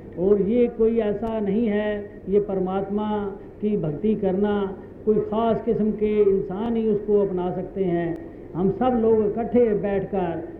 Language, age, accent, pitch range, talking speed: Hindi, 50-69, native, 185-220 Hz, 145 wpm